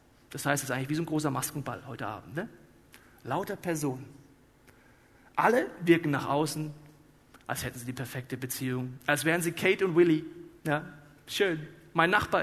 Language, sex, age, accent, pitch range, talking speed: German, male, 40-59, German, 130-170 Hz, 170 wpm